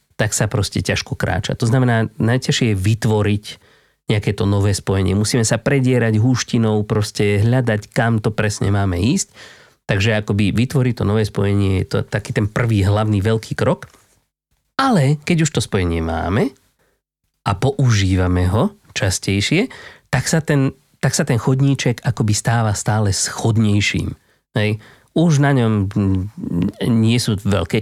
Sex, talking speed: male, 145 wpm